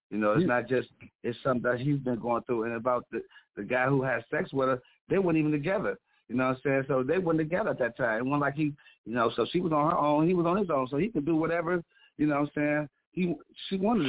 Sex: male